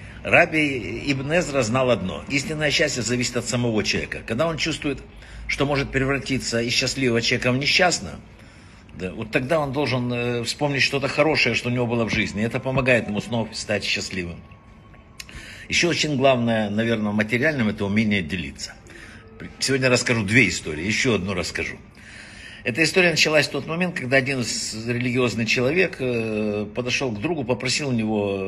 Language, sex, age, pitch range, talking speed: Russian, male, 60-79, 115-140 Hz, 150 wpm